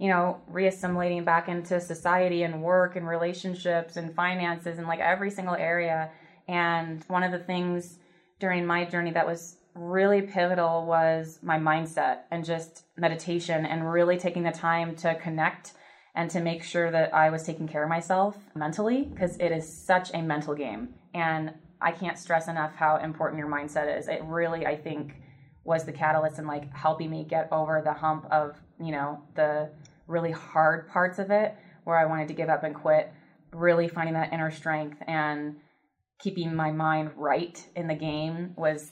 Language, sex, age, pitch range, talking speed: English, female, 20-39, 160-180 Hz, 180 wpm